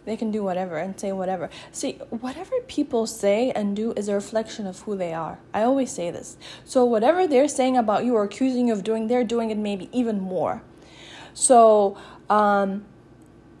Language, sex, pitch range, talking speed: English, female, 205-255 Hz, 200 wpm